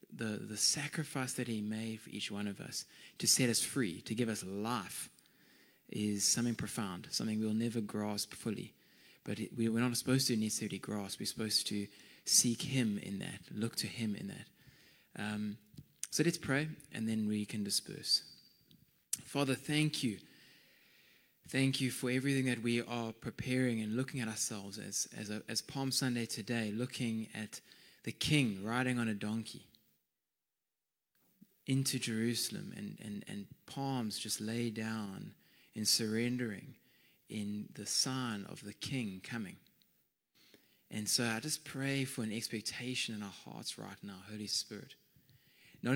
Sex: male